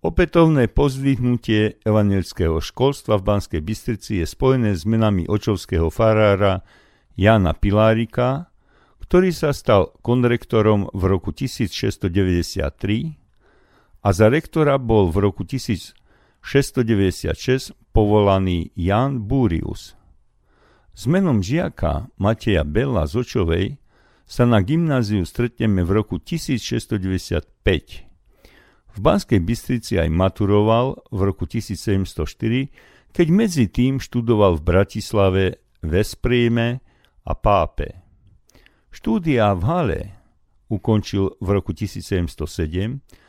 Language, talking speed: Slovak, 95 wpm